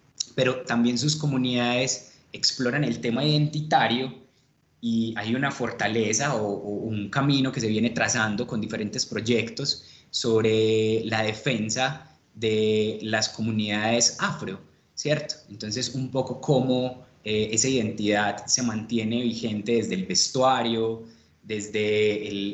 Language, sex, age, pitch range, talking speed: Spanish, male, 20-39, 105-125 Hz, 120 wpm